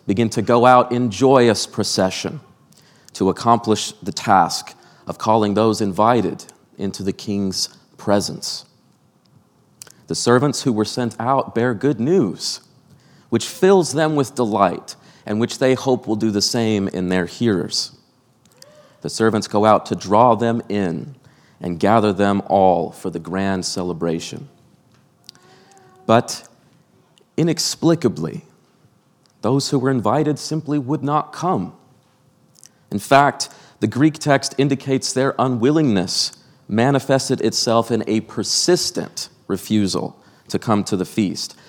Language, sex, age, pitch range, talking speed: English, male, 40-59, 100-135 Hz, 130 wpm